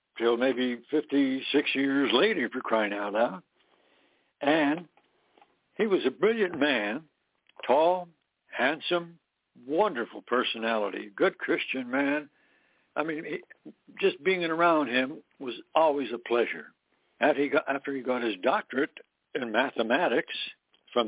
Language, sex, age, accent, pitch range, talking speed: English, male, 60-79, American, 130-190 Hz, 130 wpm